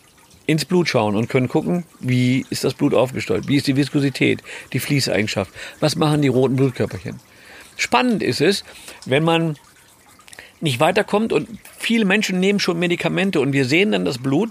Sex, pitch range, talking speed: male, 135-190 Hz, 170 wpm